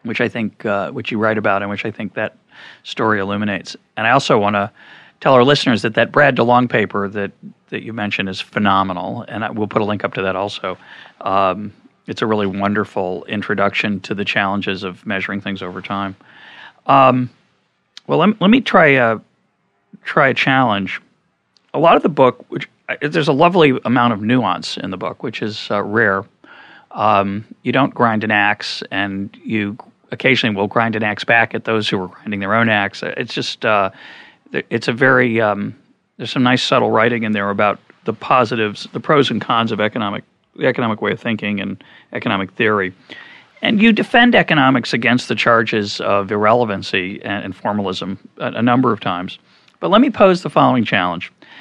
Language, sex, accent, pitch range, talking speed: English, male, American, 100-120 Hz, 195 wpm